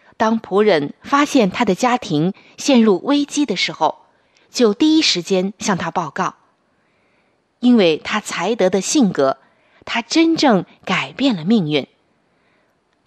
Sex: female